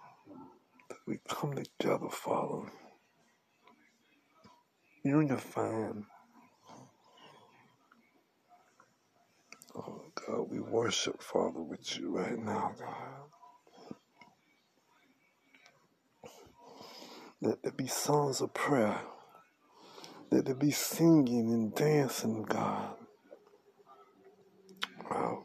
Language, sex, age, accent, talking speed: English, male, 60-79, American, 70 wpm